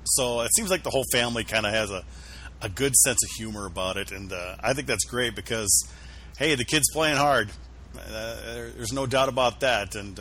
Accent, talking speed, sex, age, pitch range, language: American, 215 wpm, male, 40-59, 80-125 Hz, English